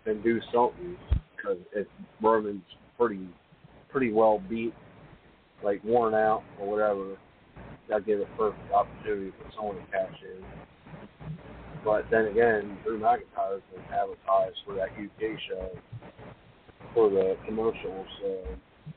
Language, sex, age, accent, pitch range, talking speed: English, male, 40-59, American, 95-155 Hz, 125 wpm